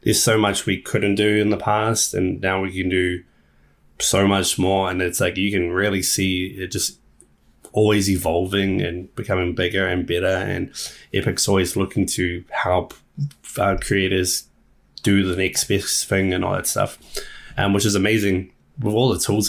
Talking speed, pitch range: 175 wpm, 90-105 Hz